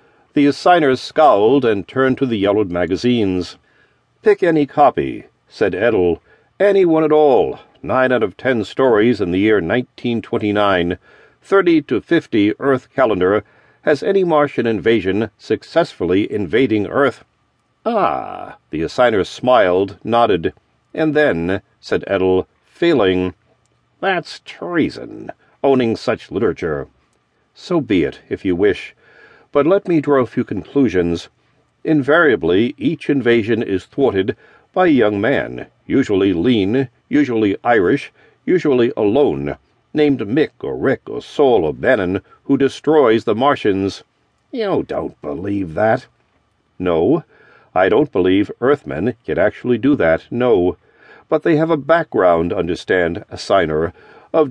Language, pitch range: English, 100-150 Hz